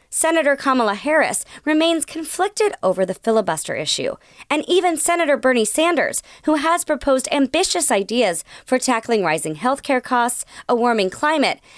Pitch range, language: 210-325 Hz, English